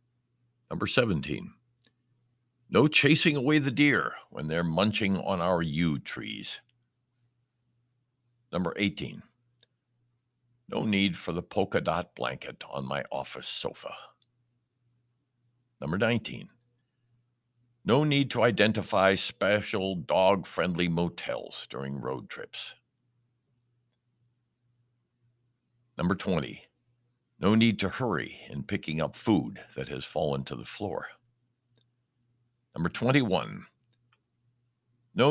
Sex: male